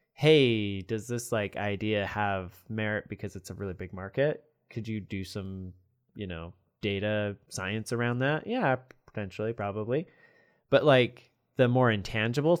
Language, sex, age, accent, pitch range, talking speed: English, male, 20-39, American, 100-130 Hz, 150 wpm